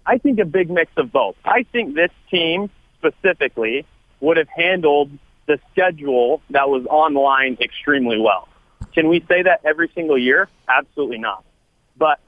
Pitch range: 140-185 Hz